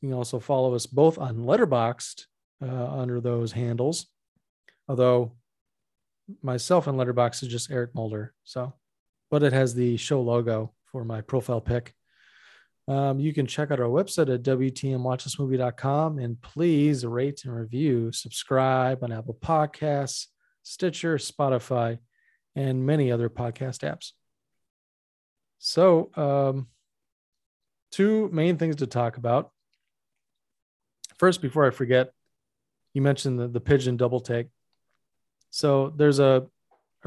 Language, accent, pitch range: English, American, 120-140 Hz